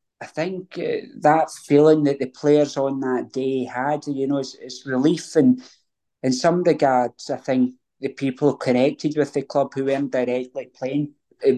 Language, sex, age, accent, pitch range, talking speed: English, male, 20-39, British, 125-140 Hz, 175 wpm